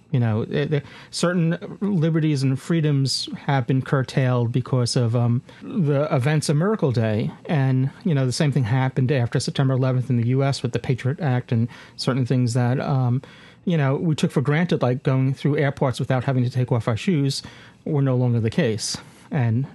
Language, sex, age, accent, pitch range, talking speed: English, male, 40-59, American, 125-150 Hz, 190 wpm